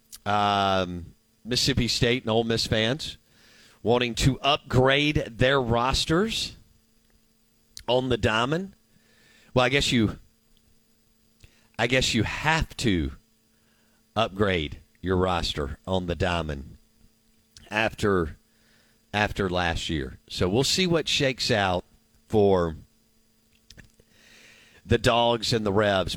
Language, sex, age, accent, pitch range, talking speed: English, male, 50-69, American, 100-120 Hz, 105 wpm